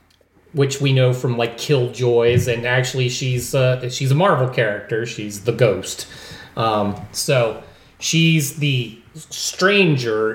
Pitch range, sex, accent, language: 115-145 Hz, male, American, English